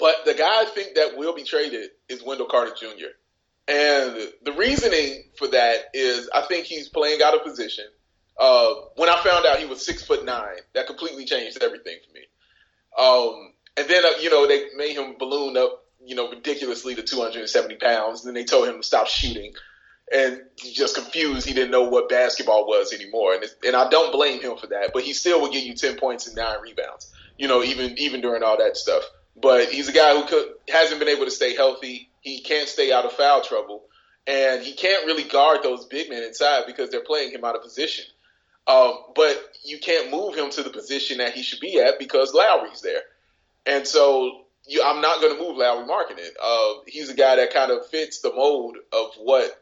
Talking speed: 220 wpm